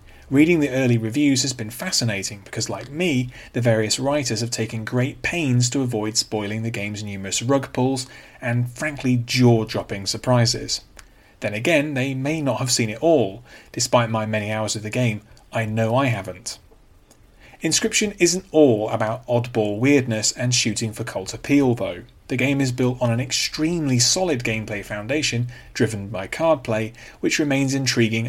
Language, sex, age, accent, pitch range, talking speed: English, male, 30-49, British, 110-135 Hz, 165 wpm